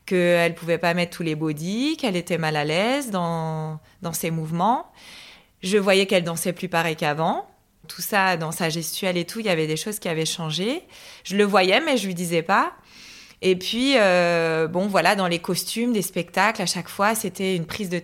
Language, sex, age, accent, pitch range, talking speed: French, female, 20-39, French, 170-215 Hz, 215 wpm